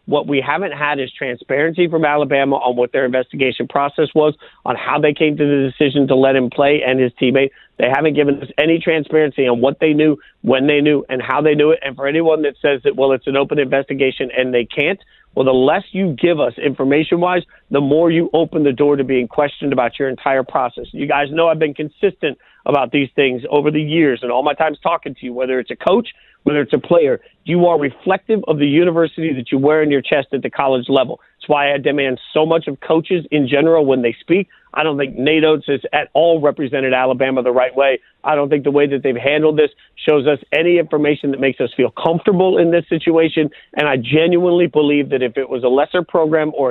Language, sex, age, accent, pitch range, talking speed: English, male, 40-59, American, 135-160 Hz, 235 wpm